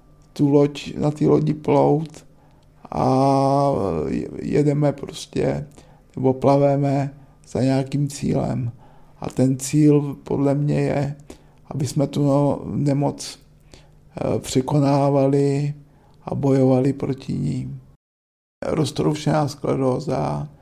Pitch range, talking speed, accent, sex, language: 130-145 Hz, 90 wpm, native, male, Czech